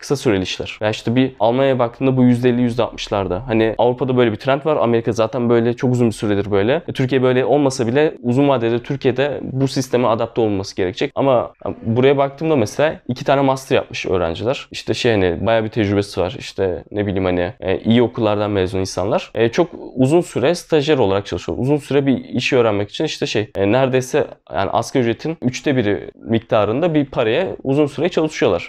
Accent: native